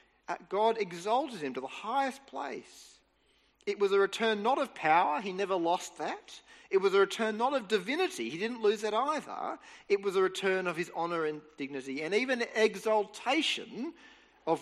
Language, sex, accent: English, male, Australian